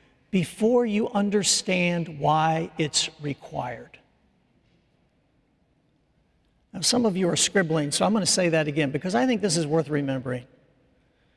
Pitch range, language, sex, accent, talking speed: 160-220 Hz, English, male, American, 130 wpm